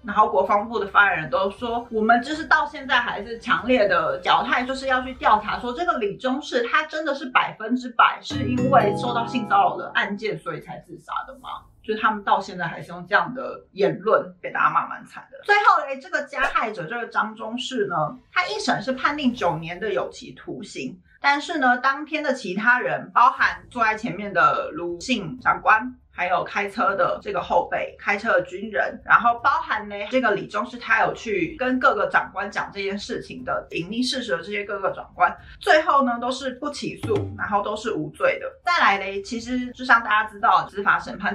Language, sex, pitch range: Chinese, female, 215-275 Hz